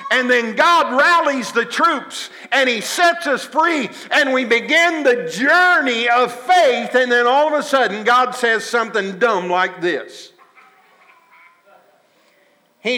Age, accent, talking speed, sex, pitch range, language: 50-69, American, 145 wpm, male, 225-290 Hz, English